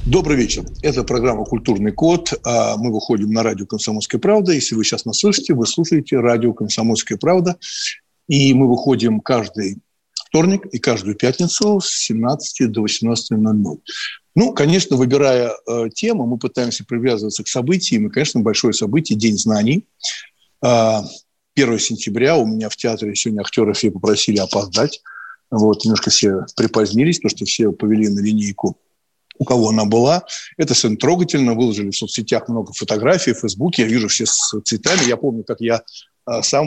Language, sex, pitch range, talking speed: Russian, male, 110-145 Hz, 155 wpm